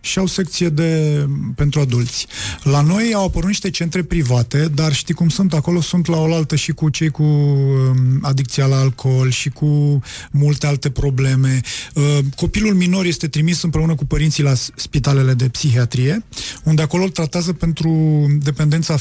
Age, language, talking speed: 30-49, Romanian, 160 wpm